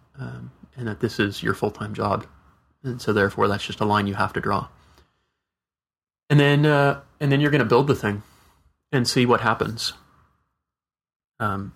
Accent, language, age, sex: American, English, 30-49, male